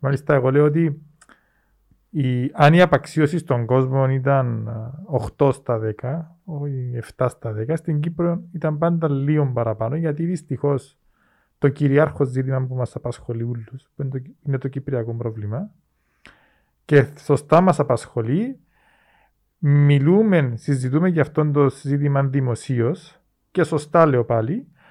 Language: Greek